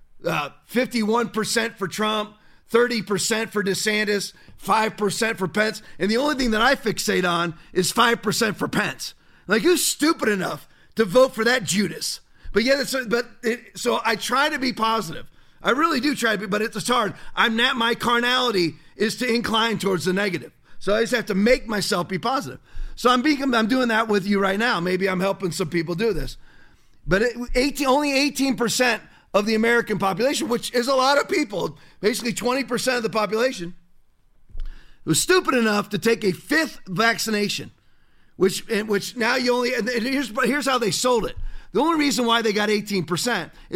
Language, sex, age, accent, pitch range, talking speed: English, male, 40-59, American, 195-245 Hz, 185 wpm